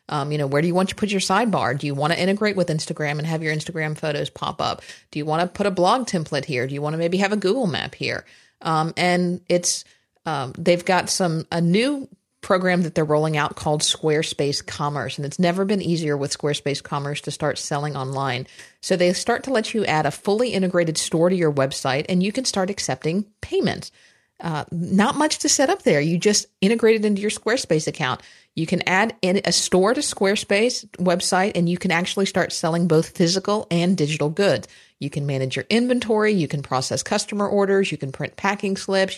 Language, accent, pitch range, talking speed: English, American, 155-195 Hz, 220 wpm